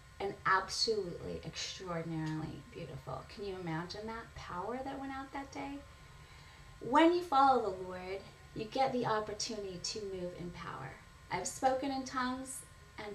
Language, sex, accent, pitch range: English, female, American, 170-255 Hz